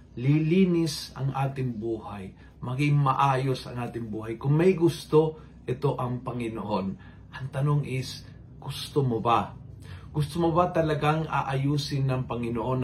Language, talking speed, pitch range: Filipino, 130 wpm, 115-150 Hz